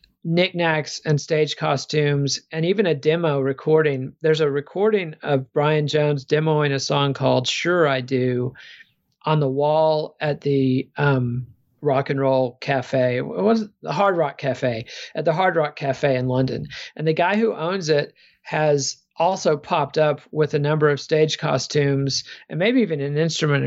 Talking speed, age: 165 wpm, 40-59